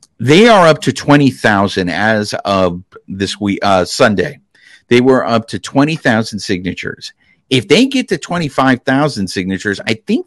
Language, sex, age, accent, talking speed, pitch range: English, male, 50-69, American, 145 wpm, 100-140 Hz